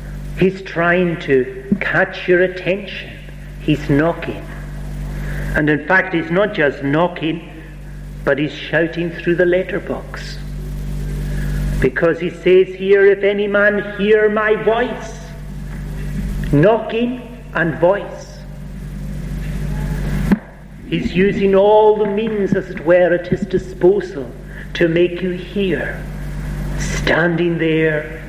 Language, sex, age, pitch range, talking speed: English, male, 50-69, 150-180 Hz, 110 wpm